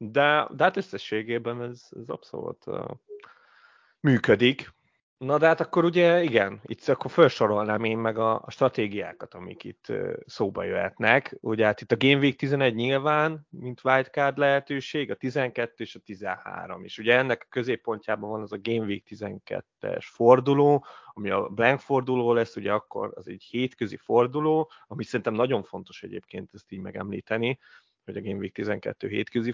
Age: 30-49